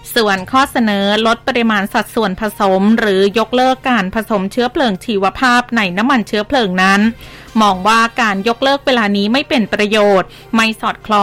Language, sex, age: Thai, female, 20-39